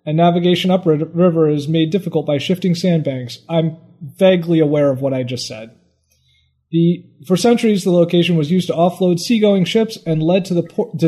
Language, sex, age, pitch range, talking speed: English, male, 30-49, 140-175 Hz, 170 wpm